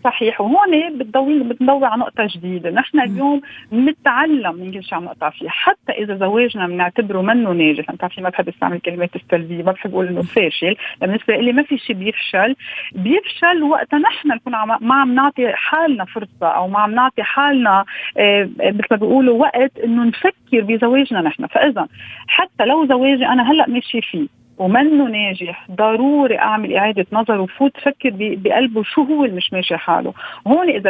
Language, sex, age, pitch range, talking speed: Arabic, female, 40-59, 185-270 Hz, 155 wpm